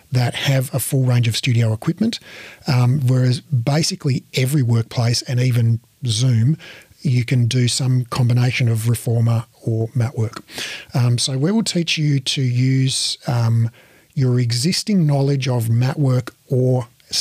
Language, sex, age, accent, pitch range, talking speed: English, male, 40-59, Australian, 120-150 Hz, 145 wpm